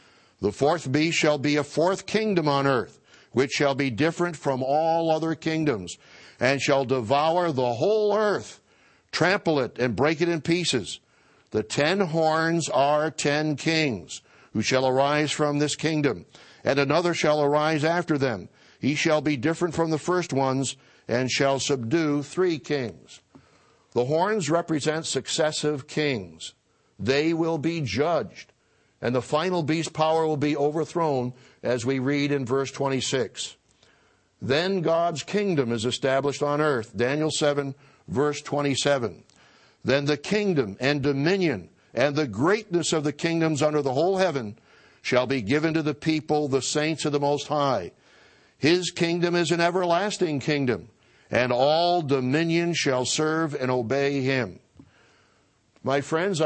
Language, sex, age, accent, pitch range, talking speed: English, male, 60-79, American, 135-165 Hz, 150 wpm